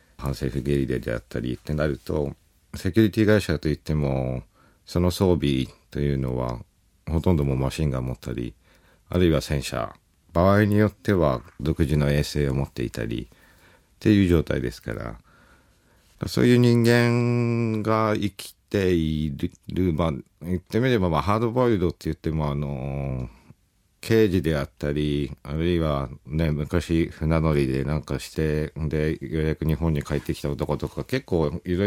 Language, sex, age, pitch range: Japanese, male, 50-69, 70-95 Hz